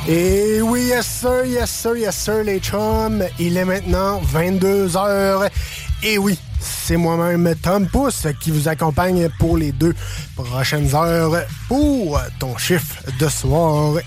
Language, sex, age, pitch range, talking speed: French, male, 20-39, 145-195 Hz, 145 wpm